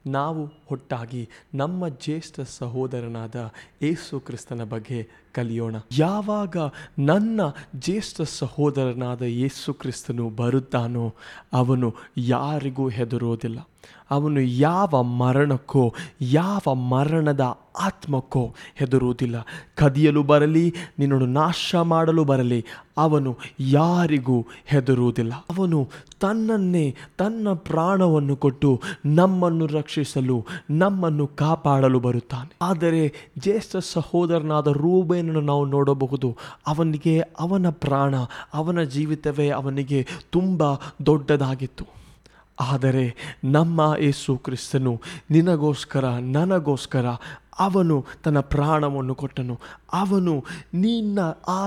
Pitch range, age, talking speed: 130-165 Hz, 20-39, 85 wpm